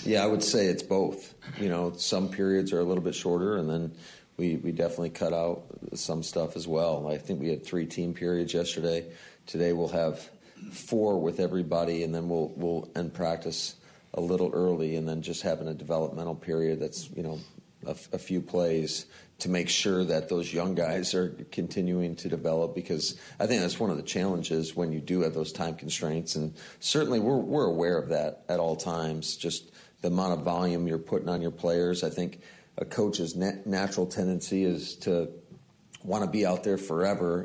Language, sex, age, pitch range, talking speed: English, male, 40-59, 80-90 Hz, 195 wpm